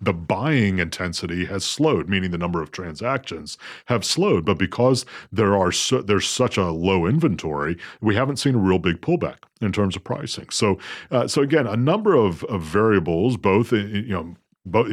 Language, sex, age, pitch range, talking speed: English, male, 40-59, 90-120 Hz, 190 wpm